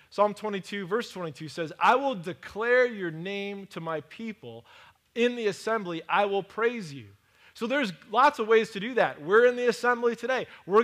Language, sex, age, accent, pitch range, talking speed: English, male, 20-39, American, 170-220 Hz, 190 wpm